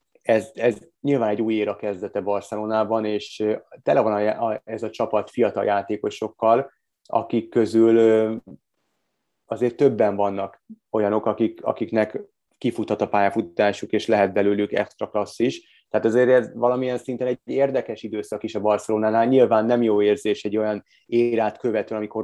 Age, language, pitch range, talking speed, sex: 30-49, Hungarian, 105-115 Hz, 140 wpm, male